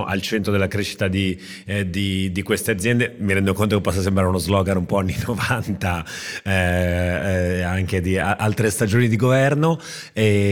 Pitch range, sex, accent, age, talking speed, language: 90-105 Hz, male, native, 30-49, 170 wpm, Italian